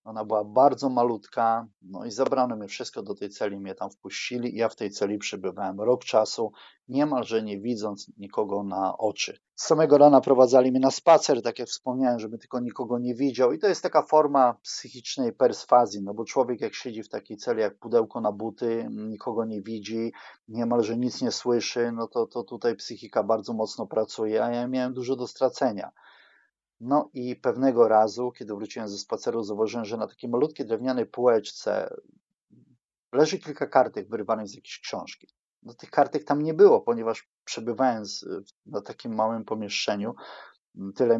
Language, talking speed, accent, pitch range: Polish, 170 wpm, native, 110-140 Hz